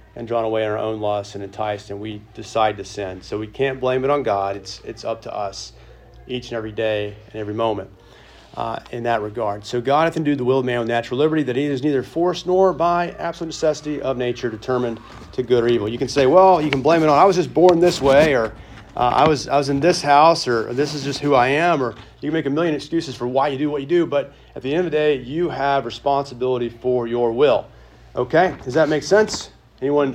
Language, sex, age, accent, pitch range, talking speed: English, male, 40-59, American, 115-145 Hz, 255 wpm